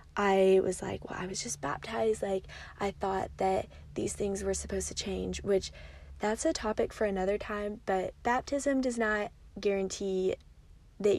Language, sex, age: English, female, 20-39